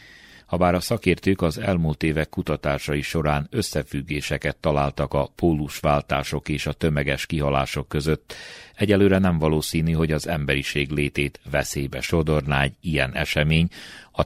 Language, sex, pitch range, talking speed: Hungarian, male, 70-85 Hz, 125 wpm